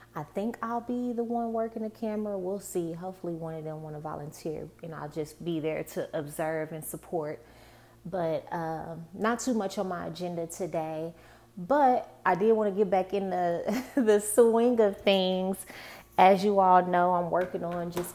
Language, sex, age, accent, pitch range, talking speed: English, female, 20-39, American, 160-190 Hz, 190 wpm